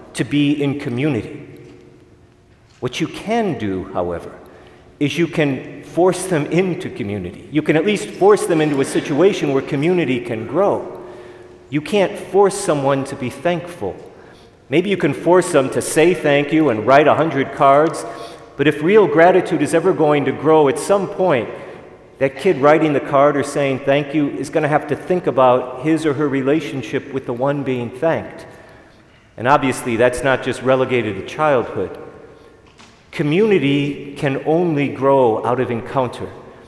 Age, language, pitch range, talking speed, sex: 40-59, English, 125-155 Hz, 165 wpm, male